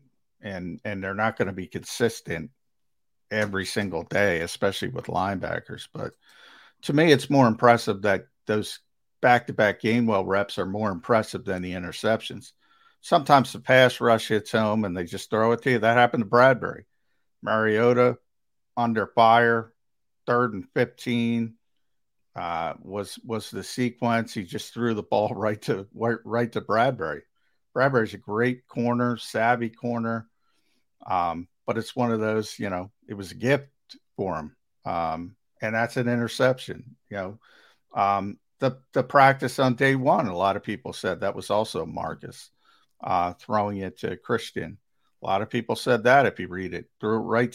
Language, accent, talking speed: English, American, 170 wpm